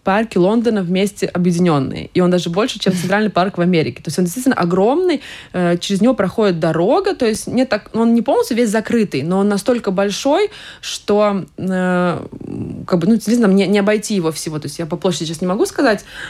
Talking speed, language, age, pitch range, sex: 205 wpm, Russian, 20-39, 175-220 Hz, female